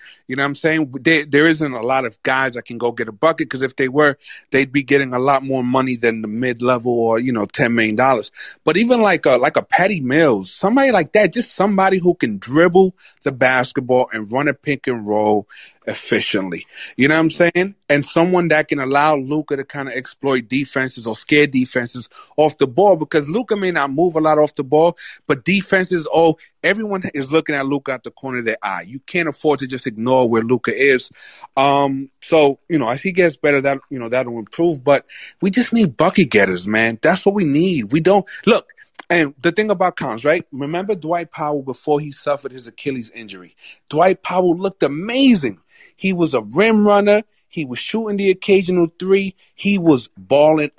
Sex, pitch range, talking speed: male, 130-175 Hz, 210 wpm